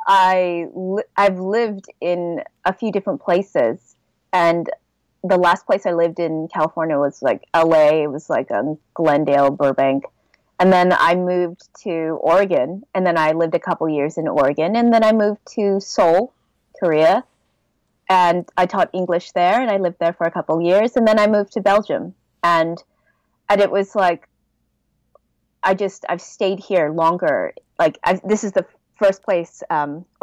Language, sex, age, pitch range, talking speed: English, female, 20-39, 165-210 Hz, 165 wpm